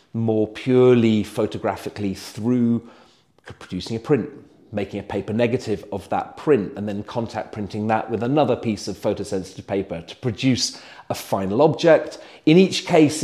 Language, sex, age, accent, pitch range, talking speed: English, male, 40-59, British, 105-130 Hz, 150 wpm